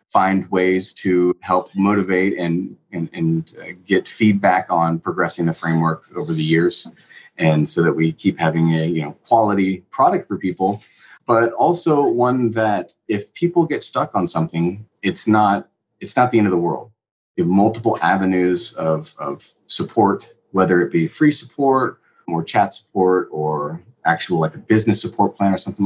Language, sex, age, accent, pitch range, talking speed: English, male, 30-49, American, 90-115 Hz, 170 wpm